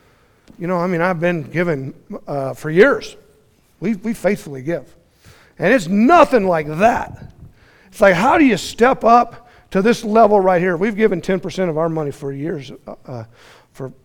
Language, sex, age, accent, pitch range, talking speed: English, male, 50-69, American, 155-220 Hz, 175 wpm